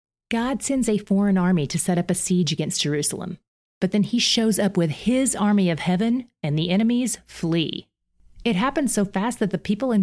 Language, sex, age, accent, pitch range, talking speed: English, female, 30-49, American, 155-200 Hz, 205 wpm